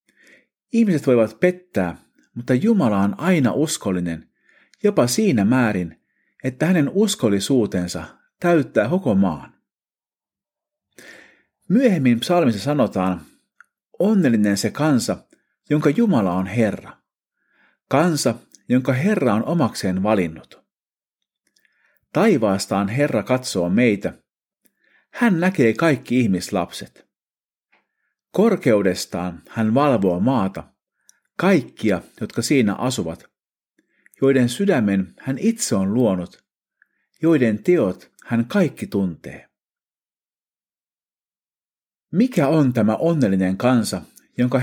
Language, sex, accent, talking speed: Finnish, male, native, 85 wpm